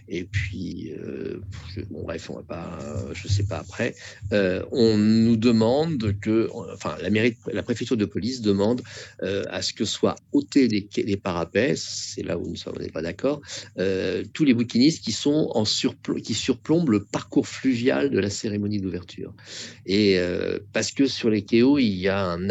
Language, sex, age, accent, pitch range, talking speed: French, male, 50-69, French, 95-115 Hz, 190 wpm